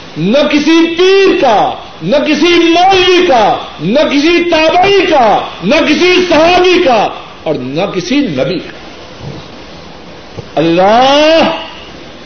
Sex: male